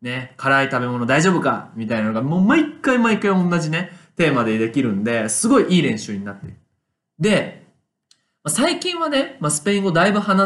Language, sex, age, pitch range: Japanese, male, 20-39, 125-205 Hz